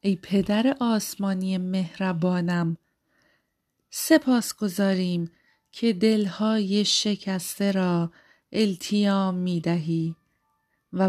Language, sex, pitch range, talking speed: Persian, female, 175-215 Hz, 75 wpm